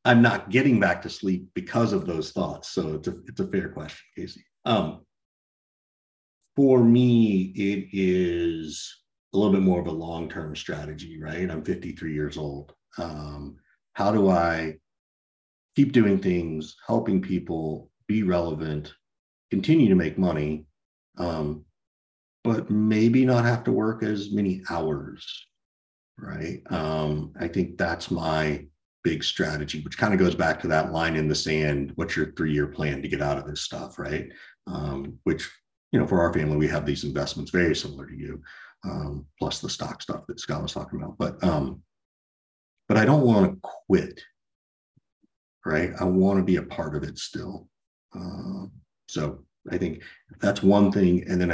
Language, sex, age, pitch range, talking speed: English, male, 50-69, 75-95 Hz, 165 wpm